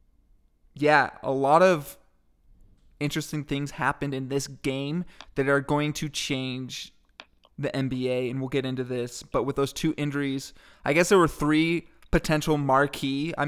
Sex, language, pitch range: male, English, 130-150 Hz